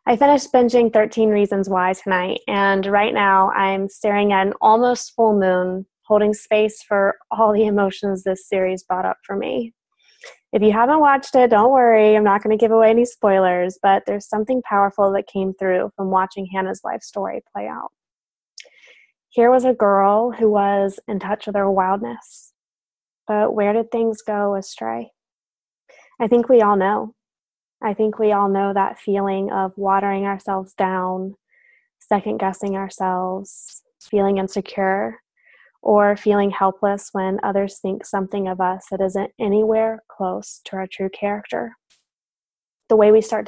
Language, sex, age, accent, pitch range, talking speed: English, female, 20-39, American, 195-215 Hz, 160 wpm